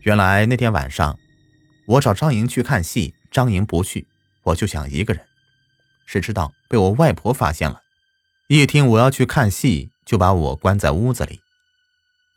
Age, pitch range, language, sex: 30-49, 90-150 Hz, Chinese, male